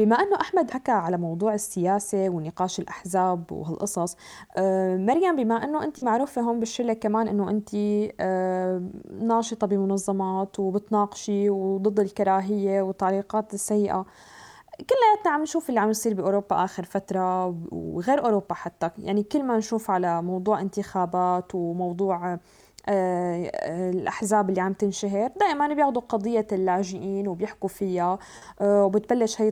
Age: 20-39